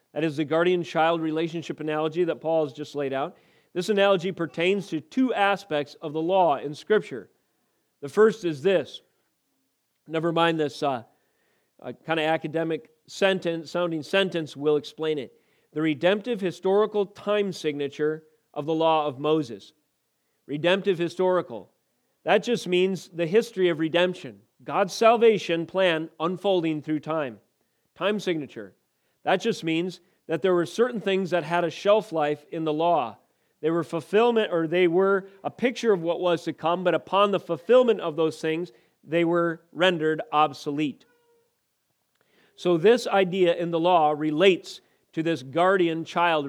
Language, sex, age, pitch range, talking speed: English, male, 40-59, 155-190 Hz, 155 wpm